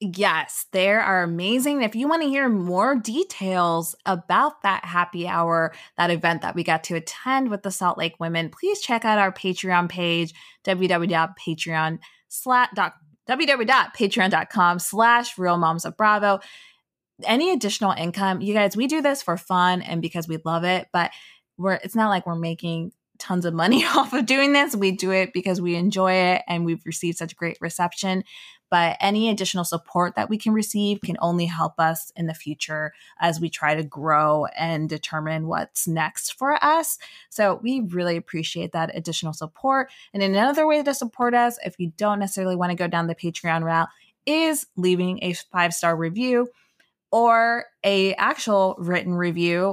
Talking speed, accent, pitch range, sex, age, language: 170 wpm, American, 170-220 Hz, female, 20-39, English